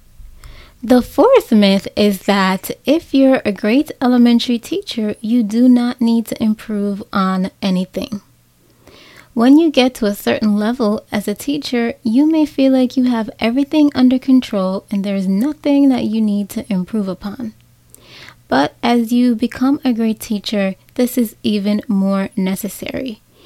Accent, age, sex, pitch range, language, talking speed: American, 20-39, female, 195-255 Hz, English, 150 wpm